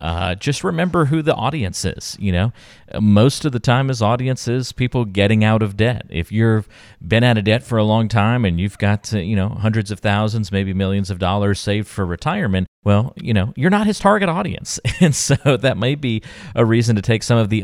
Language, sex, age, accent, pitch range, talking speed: English, male, 30-49, American, 90-120 Hz, 225 wpm